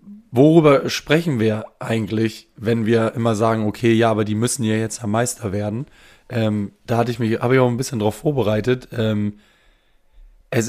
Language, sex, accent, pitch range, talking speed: German, male, German, 110-130 Hz, 180 wpm